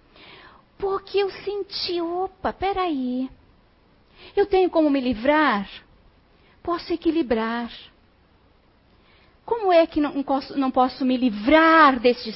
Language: Portuguese